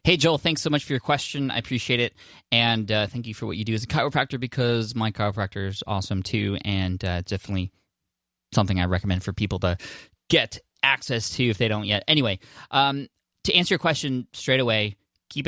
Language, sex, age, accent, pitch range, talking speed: English, male, 20-39, American, 100-125 Hz, 210 wpm